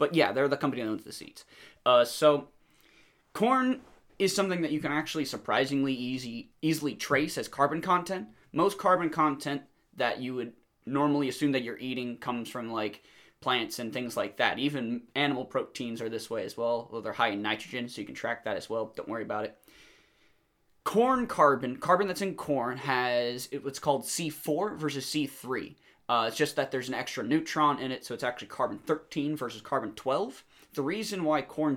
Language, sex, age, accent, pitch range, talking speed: English, male, 20-39, American, 120-155 Hz, 185 wpm